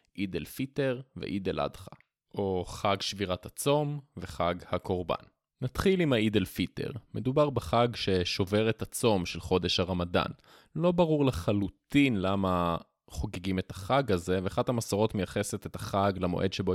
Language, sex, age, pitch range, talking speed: Hebrew, male, 20-39, 90-110 Hz, 140 wpm